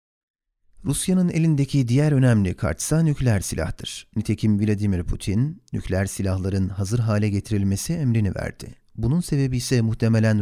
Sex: male